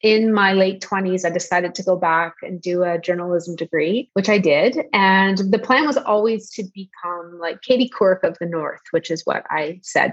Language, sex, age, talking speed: English, female, 30-49, 205 wpm